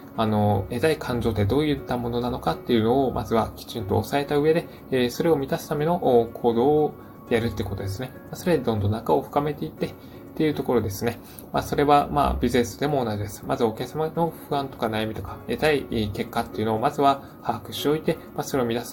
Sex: male